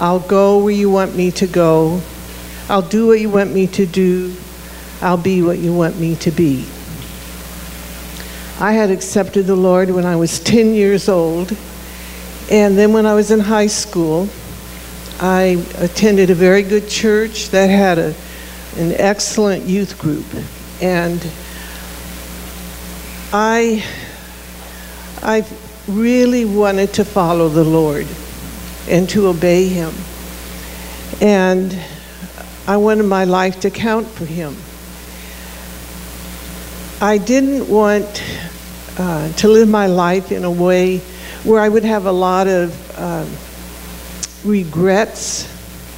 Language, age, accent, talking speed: English, 60-79, American, 130 wpm